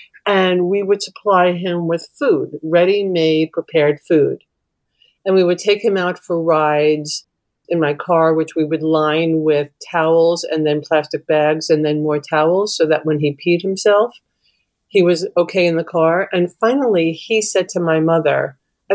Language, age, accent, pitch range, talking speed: English, 40-59, American, 160-200 Hz, 175 wpm